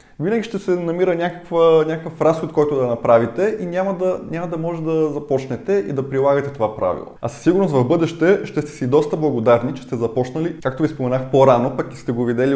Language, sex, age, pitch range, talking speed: Bulgarian, male, 20-39, 135-180 Hz, 215 wpm